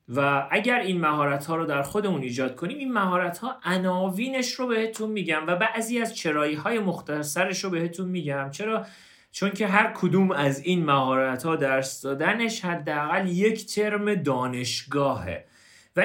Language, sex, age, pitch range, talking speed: Persian, male, 40-59, 155-205 Hz, 155 wpm